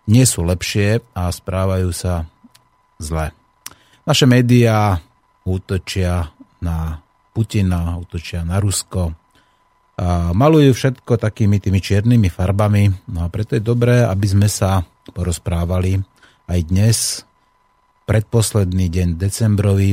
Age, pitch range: 30-49, 90-115 Hz